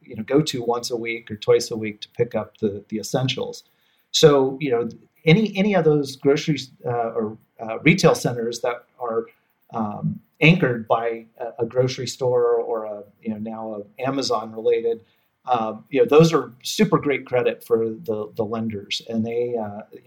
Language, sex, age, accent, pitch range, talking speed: English, male, 40-59, American, 115-145 Hz, 185 wpm